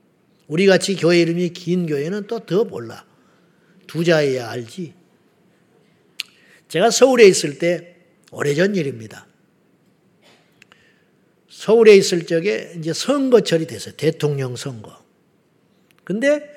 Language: Korean